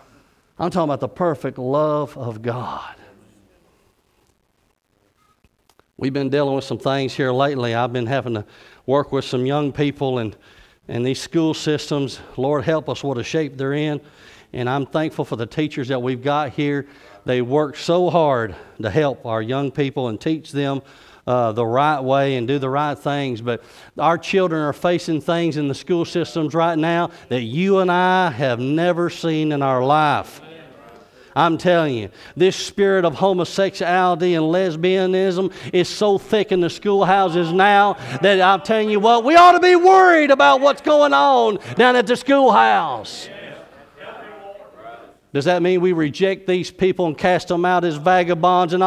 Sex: male